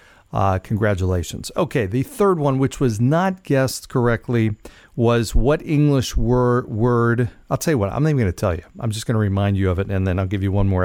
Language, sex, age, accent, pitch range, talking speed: English, male, 40-59, American, 100-135 Hz, 225 wpm